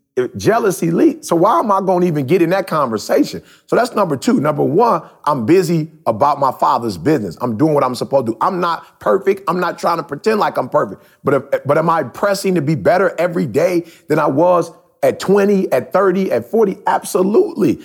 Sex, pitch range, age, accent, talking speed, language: male, 135-195 Hz, 30-49, American, 210 wpm, English